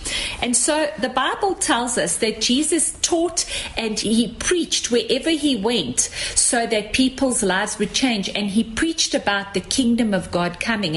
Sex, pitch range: female, 210-275 Hz